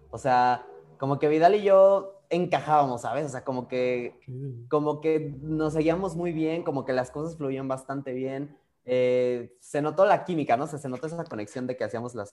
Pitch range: 120-155 Hz